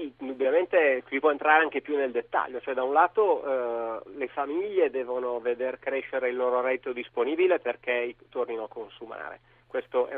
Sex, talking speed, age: male, 165 wpm, 40-59